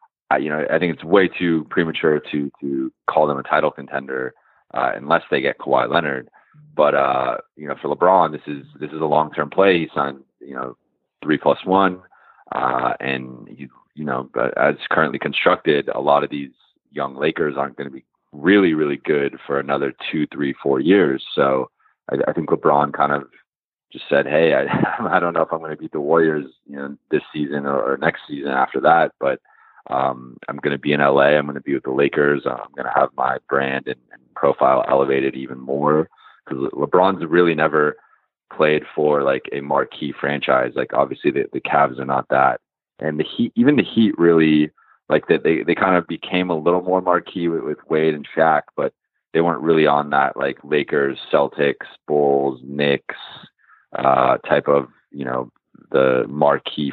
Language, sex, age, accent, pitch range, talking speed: English, male, 30-49, American, 70-80 Hz, 195 wpm